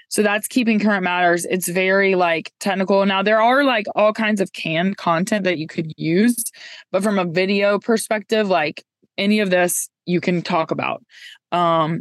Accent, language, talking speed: American, English, 180 wpm